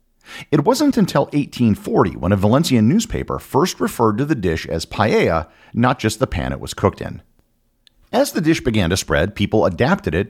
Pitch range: 90-130 Hz